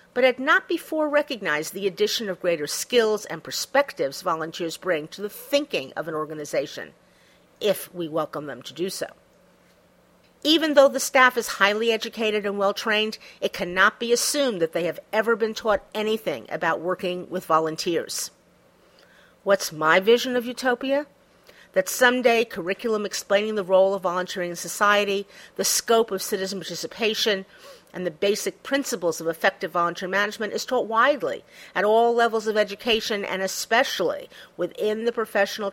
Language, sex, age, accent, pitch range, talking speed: English, female, 50-69, American, 180-230 Hz, 155 wpm